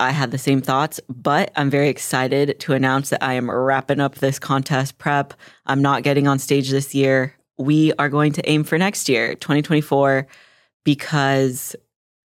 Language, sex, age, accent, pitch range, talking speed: English, female, 20-39, American, 125-140 Hz, 175 wpm